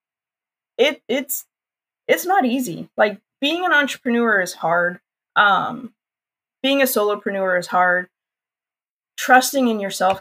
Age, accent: 20-39, American